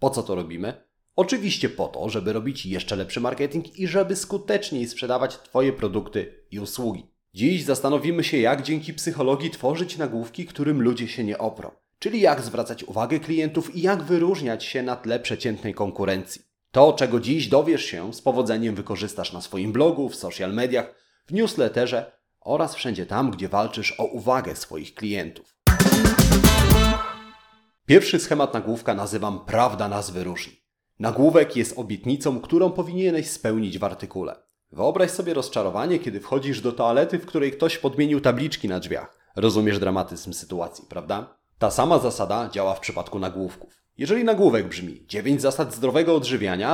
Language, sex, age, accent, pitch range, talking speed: Polish, male, 30-49, native, 100-155 Hz, 150 wpm